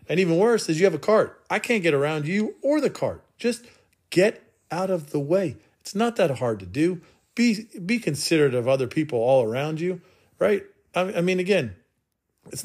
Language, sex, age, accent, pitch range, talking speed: English, male, 40-59, American, 145-195 Hz, 205 wpm